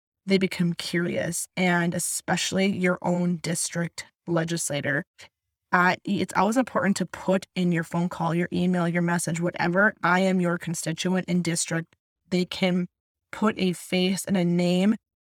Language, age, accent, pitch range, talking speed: English, 20-39, American, 170-190 Hz, 150 wpm